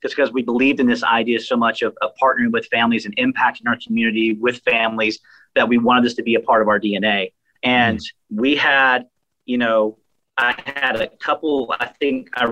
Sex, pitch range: male, 120-150 Hz